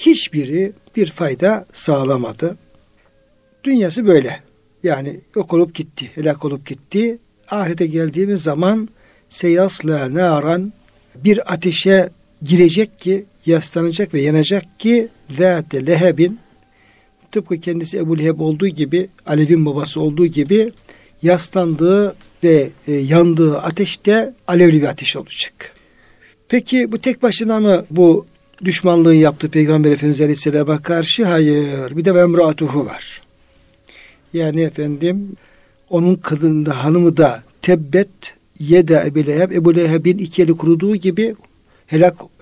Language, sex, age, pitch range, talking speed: Turkish, male, 60-79, 150-190 Hz, 110 wpm